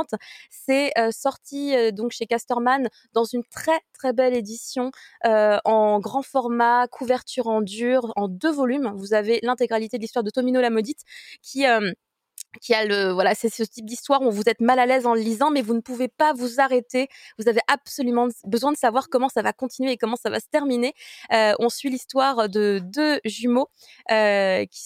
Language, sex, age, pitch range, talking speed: French, female, 20-39, 215-255 Hz, 195 wpm